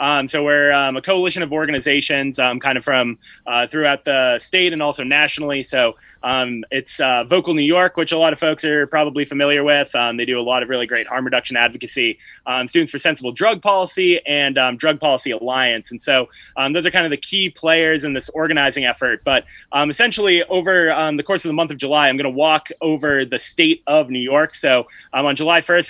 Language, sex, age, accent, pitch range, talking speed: English, male, 20-39, American, 130-165 Hz, 225 wpm